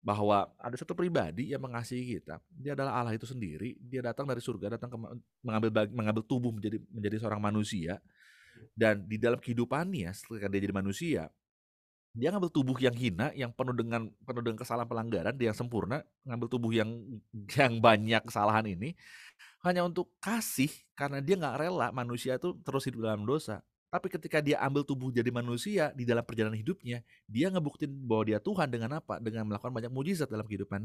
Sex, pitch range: male, 105-140 Hz